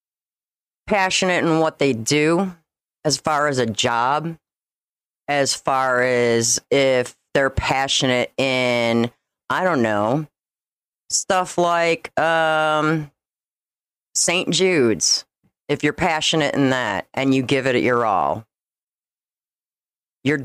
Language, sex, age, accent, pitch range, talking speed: English, female, 40-59, American, 125-170 Hz, 110 wpm